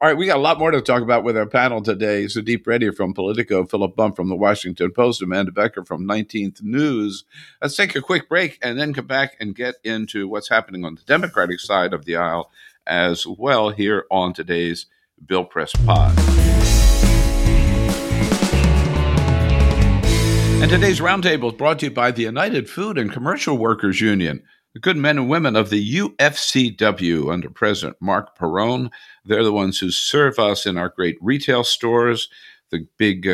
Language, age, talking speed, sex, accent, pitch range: English, 50-69, 180 wpm, male, American, 95-125 Hz